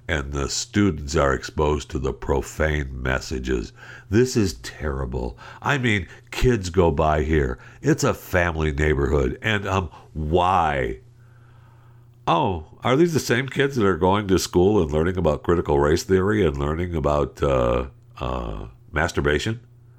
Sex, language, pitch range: male, English, 75-115 Hz